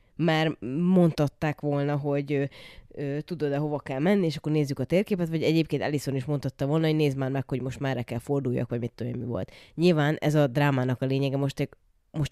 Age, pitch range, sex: 20-39, 135-160 Hz, female